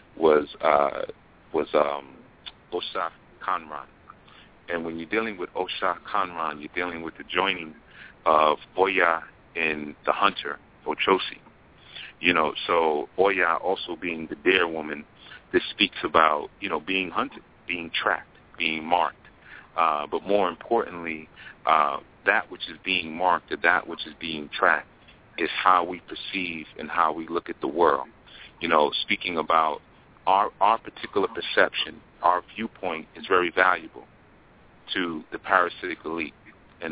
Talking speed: 145 wpm